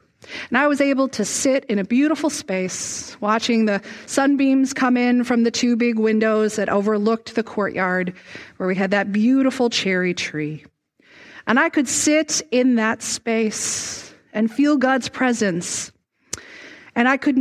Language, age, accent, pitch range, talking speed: English, 40-59, American, 205-265 Hz, 155 wpm